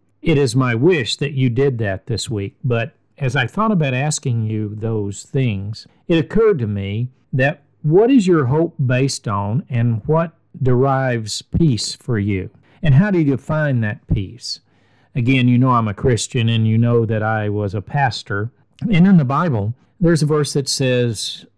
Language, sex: English, male